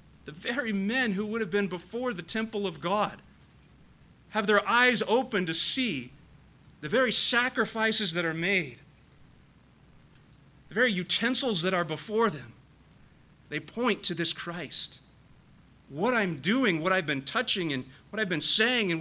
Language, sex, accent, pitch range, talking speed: English, male, American, 150-205 Hz, 155 wpm